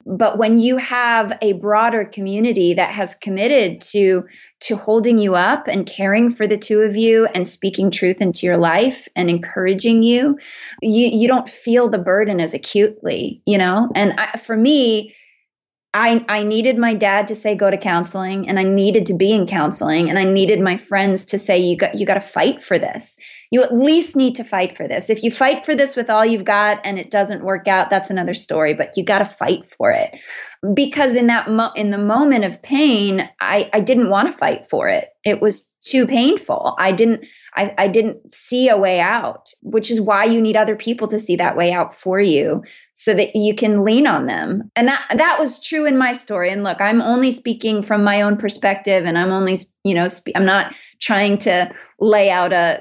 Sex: female